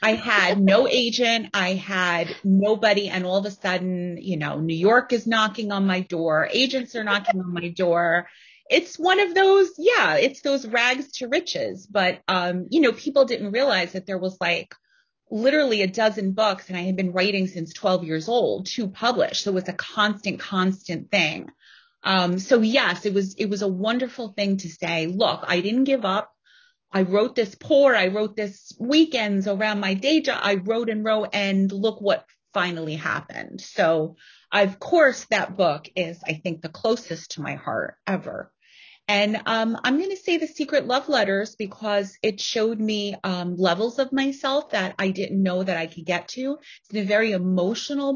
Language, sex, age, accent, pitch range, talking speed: English, female, 30-49, American, 185-245 Hz, 190 wpm